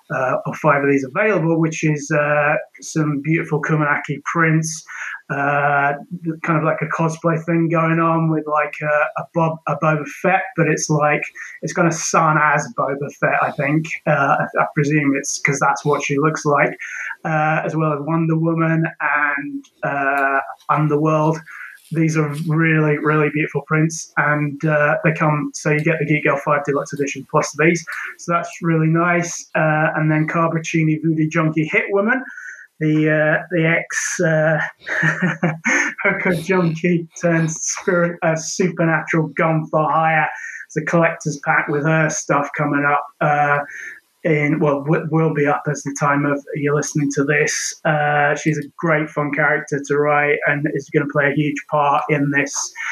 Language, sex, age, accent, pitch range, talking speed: English, male, 20-39, British, 145-160 Hz, 170 wpm